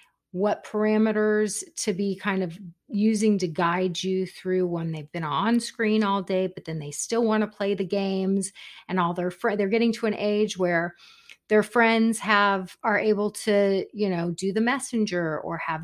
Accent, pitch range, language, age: American, 175-215 Hz, English, 30-49